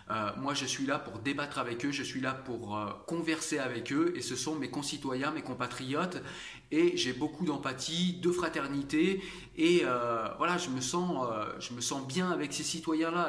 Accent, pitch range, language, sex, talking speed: French, 130-170 Hz, French, male, 200 wpm